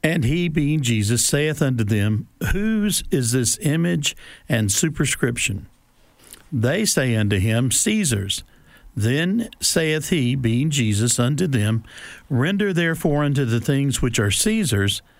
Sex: male